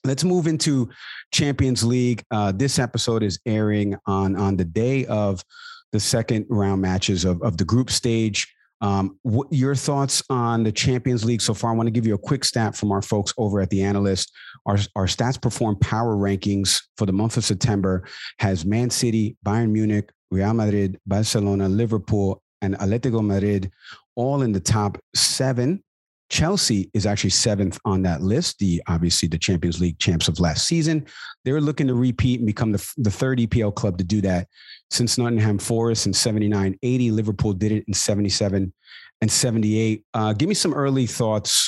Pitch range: 100-120 Hz